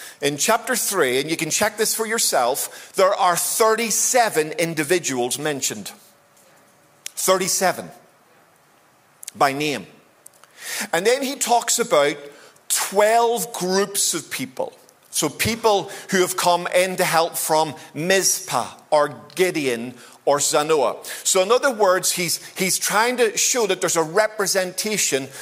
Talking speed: 125 wpm